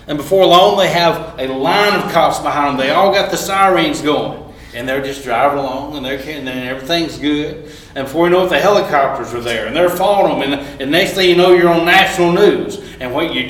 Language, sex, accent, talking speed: English, male, American, 235 wpm